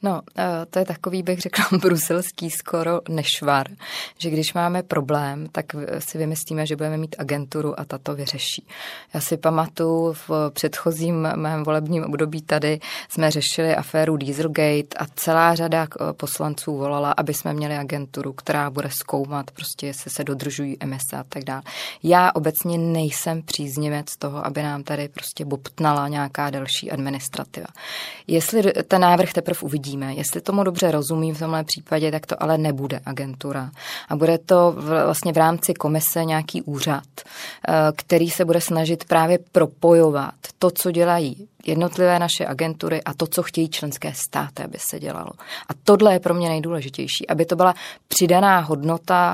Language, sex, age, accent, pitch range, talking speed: Czech, female, 20-39, native, 150-170 Hz, 155 wpm